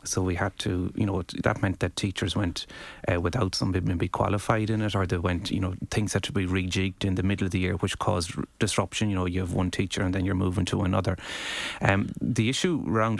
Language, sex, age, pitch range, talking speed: English, male, 30-49, 90-110 Hz, 240 wpm